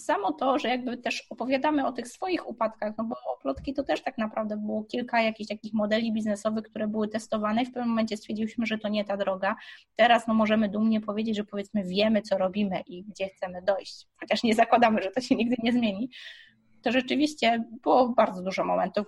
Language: Polish